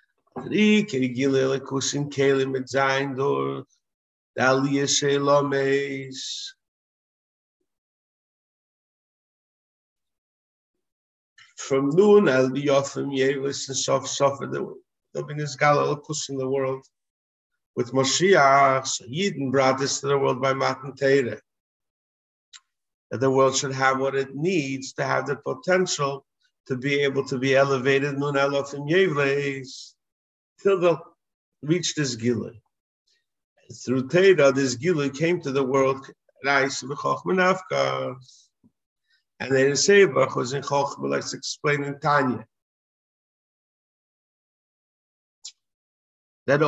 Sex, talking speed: male, 95 wpm